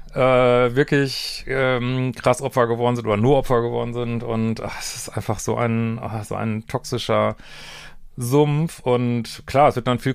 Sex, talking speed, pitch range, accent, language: male, 170 wpm, 110-130 Hz, German, German